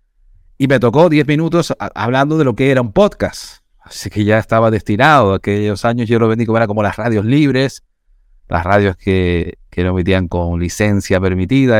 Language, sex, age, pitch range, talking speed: English, male, 30-49, 85-115 Hz, 195 wpm